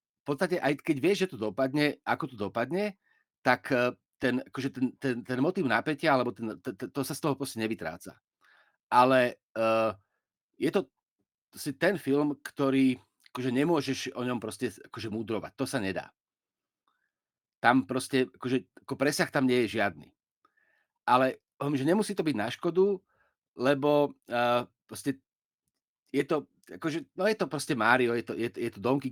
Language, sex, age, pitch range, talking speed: Slovak, male, 40-59, 120-150 Hz, 165 wpm